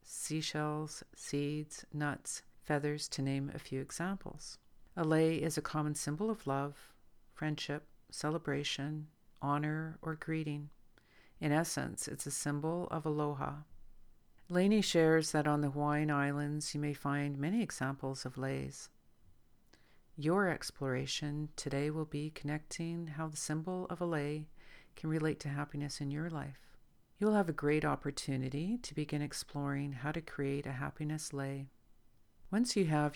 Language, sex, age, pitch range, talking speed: English, female, 50-69, 140-160 Hz, 145 wpm